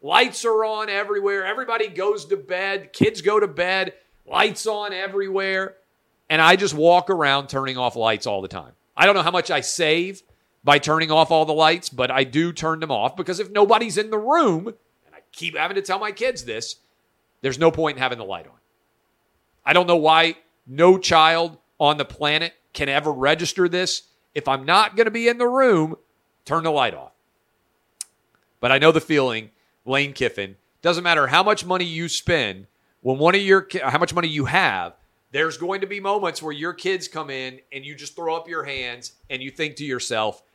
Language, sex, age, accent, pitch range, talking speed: English, male, 40-59, American, 140-190 Hz, 205 wpm